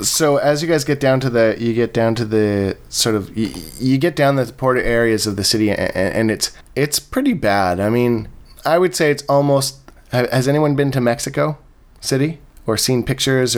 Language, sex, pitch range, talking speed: English, male, 105-130 Hz, 210 wpm